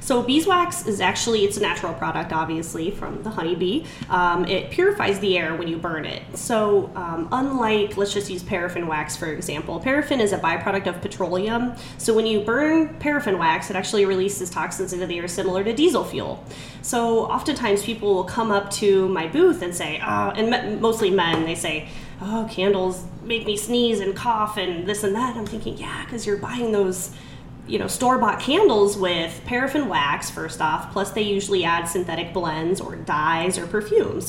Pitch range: 180-225 Hz